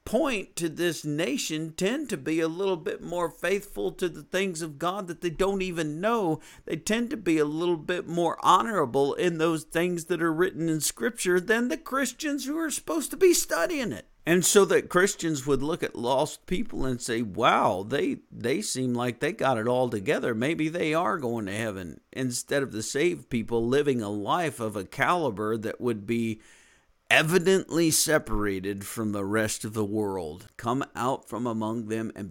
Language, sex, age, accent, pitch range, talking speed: English, male, 50-69, American, 110-170 Hz, 195 wpm